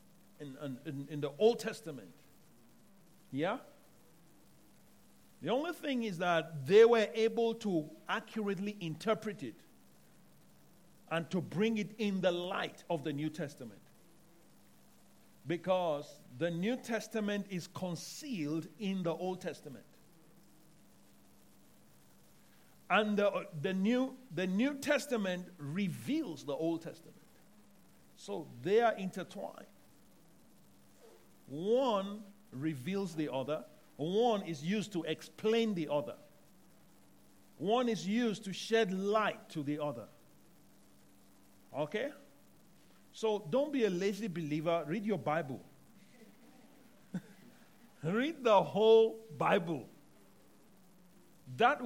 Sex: male